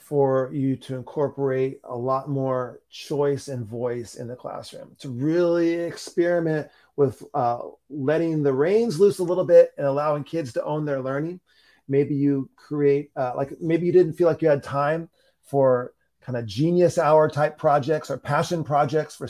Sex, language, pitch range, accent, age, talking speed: male, English, 140-175 Hz, American, 30-49, 175 wpm